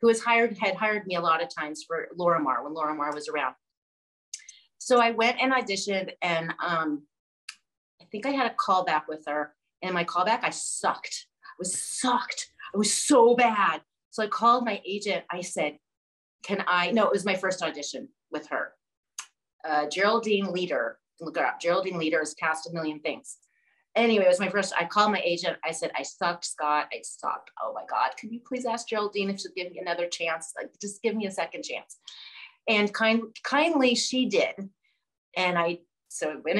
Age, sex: 30-49, female